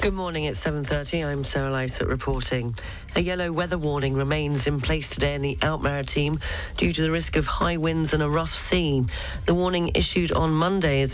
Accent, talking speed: British, 195 wpm